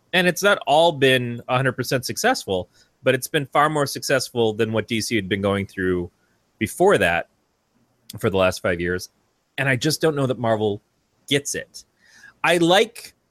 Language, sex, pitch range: English, male, 105-140 Hz